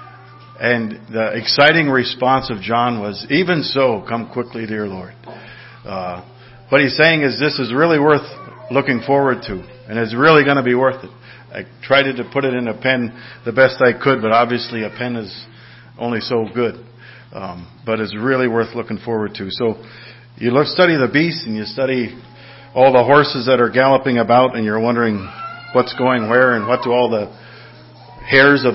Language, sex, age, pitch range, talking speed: English, male, 50-69, 115-130 Hz, 185 wpm